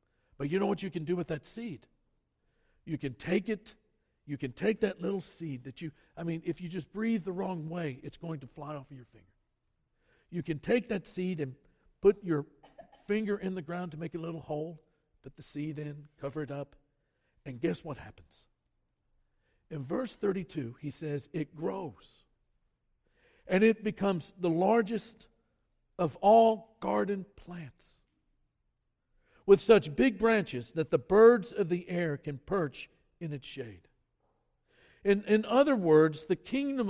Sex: male